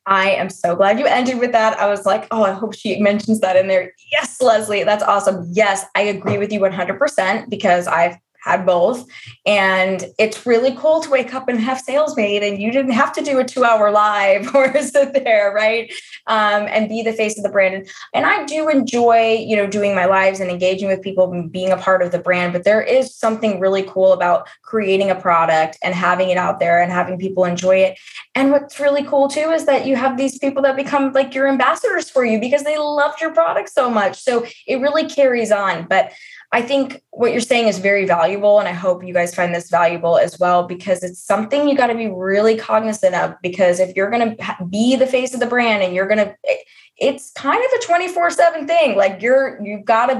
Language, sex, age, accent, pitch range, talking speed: English, female, 20-39, American, 190-265 Hz, 225 wpm